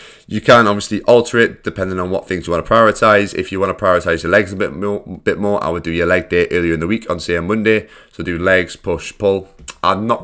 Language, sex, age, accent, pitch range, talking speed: English, male, 20-39, British, 85-100 Hz, 260 wpm